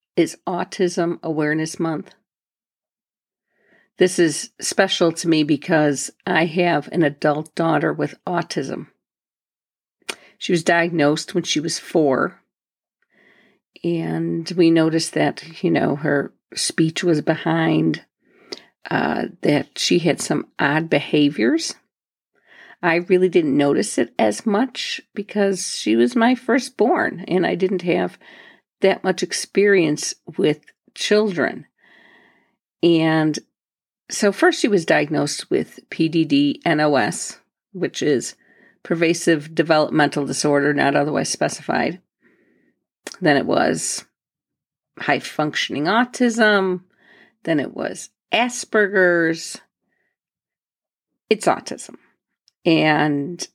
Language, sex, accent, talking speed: English, female, American, 100 wpm